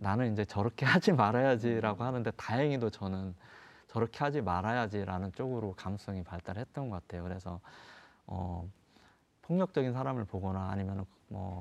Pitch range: 100-135 Hz